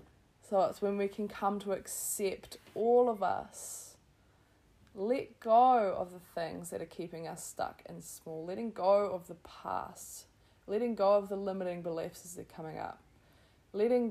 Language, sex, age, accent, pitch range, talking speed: English, female, 20-39, Australian, 170-205 Hz, 160 wpm